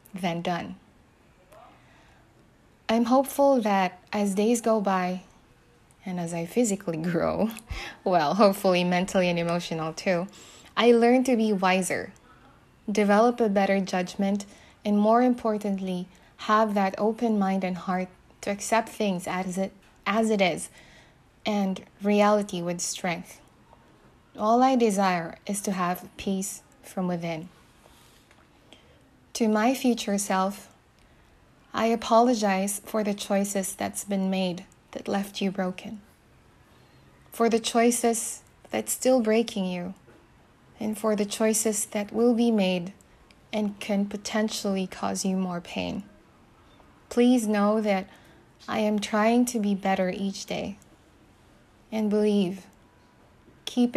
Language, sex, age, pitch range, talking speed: English, female, 20-39, 185-220 Hz, 120 wpm